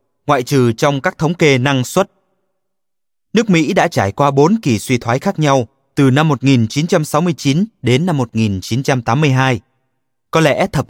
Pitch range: 125-170 Hz